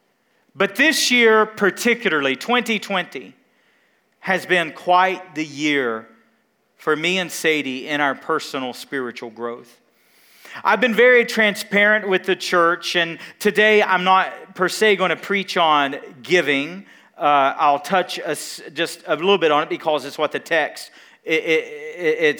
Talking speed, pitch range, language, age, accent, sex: 145 wpm, 165-215 Hz, English, 40-59, American, male